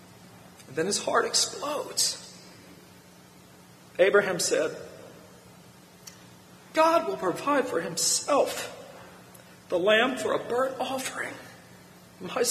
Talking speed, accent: 85 wpm, American